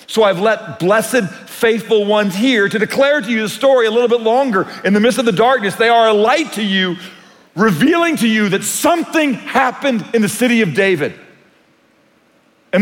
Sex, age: male, 40-59